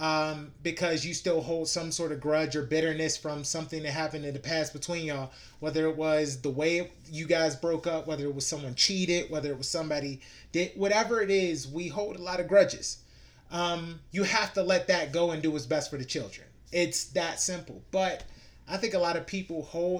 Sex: male